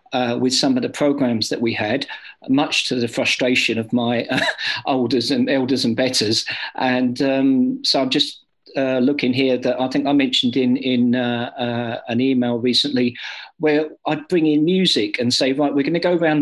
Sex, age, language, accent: male, 50-69, English, British